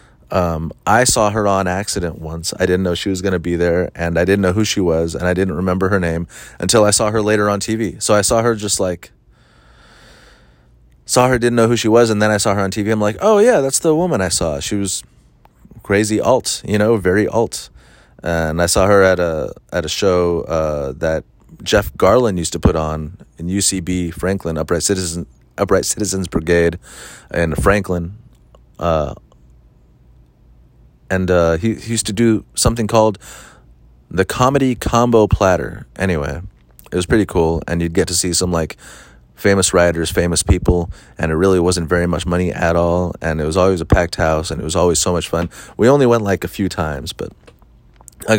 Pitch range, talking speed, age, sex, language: 85-105 Hz, 200 wpm, 30-49, male, English